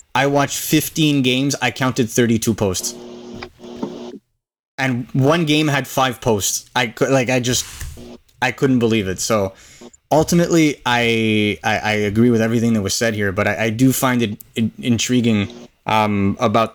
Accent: American